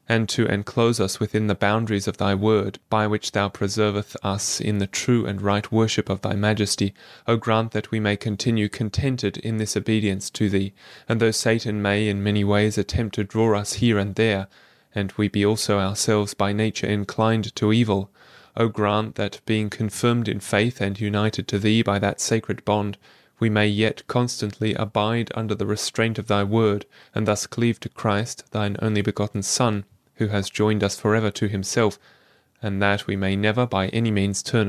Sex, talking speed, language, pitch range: male, 190 wpm, English, 100-110 Hz